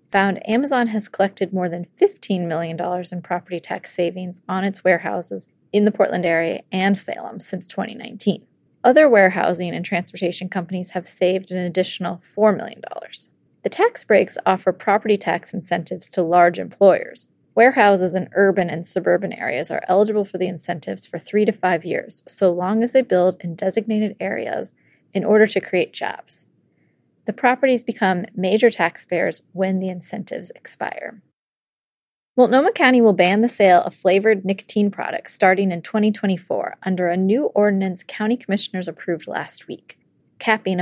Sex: female